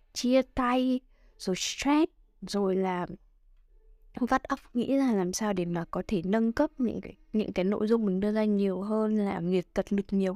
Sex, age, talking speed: female, 20-39, 210 wpm